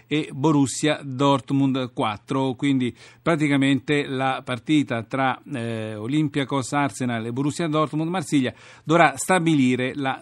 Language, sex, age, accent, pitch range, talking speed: Italian, male, 50-69, native, 130-155 Hz, 110 wpm